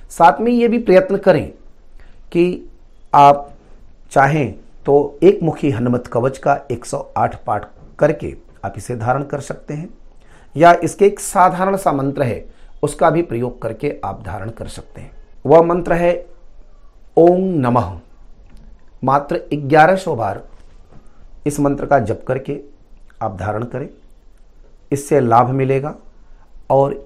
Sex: male